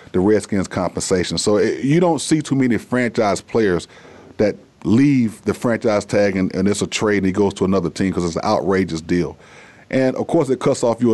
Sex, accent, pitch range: male, American, 95-125 Hz